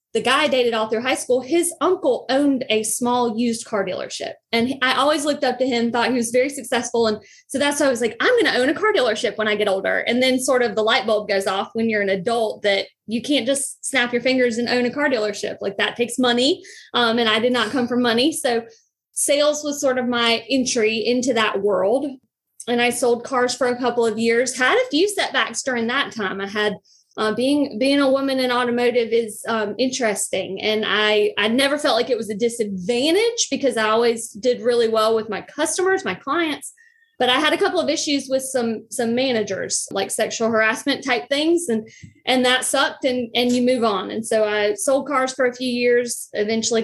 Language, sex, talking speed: English, female, 225 wpm